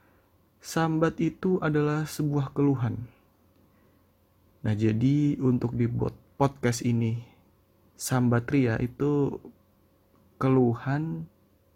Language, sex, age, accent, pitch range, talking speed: Indonesian, male, 20-39, native, 100-130 Hz, 75 wpm